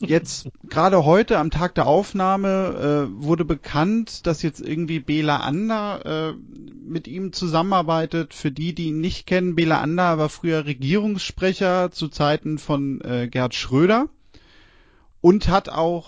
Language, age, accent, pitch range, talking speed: German, 30-49, German, 140-180 Hz, 145 wpm